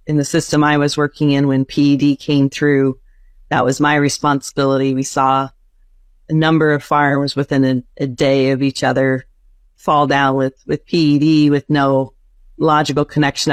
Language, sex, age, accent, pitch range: Chinese, female, 40-59, American, 135-160 Hz